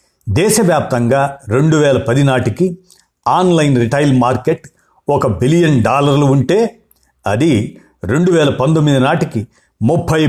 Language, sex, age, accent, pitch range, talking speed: Telugu, male, 50-69, native, 110-145 Hz, 105 wpm